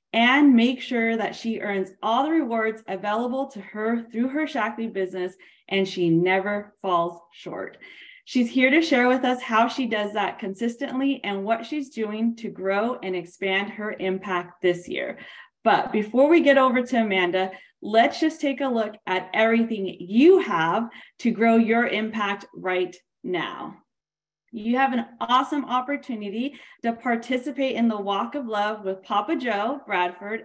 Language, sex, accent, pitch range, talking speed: English, female, American, 200-255 Hz, 160 wpm